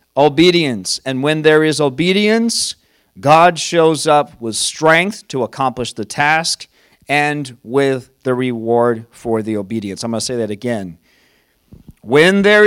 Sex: male